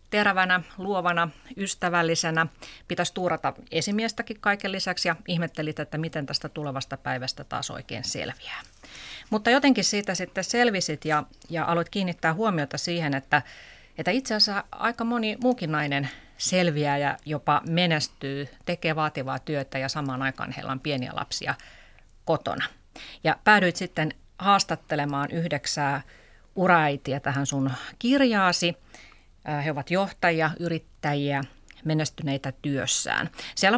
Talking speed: 120 wpm